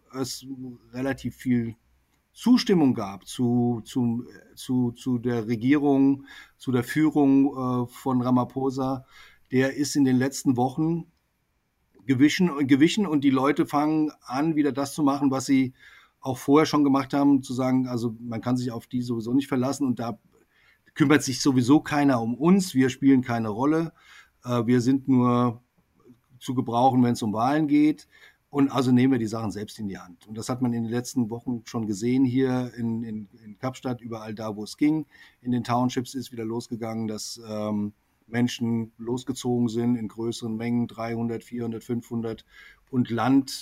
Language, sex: German, male